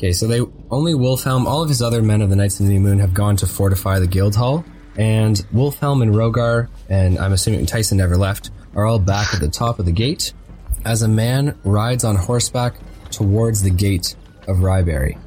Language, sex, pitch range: English, male, 95-120 Hz